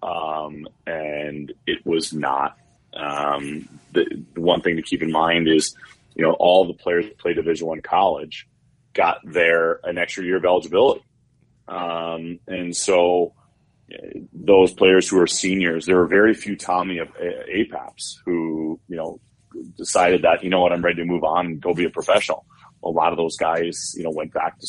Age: 30-49